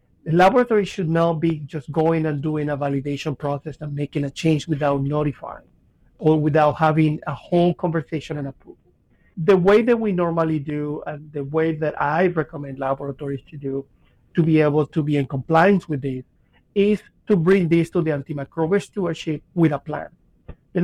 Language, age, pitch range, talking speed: English, 50-69, 150-175 Hz, 180 wpm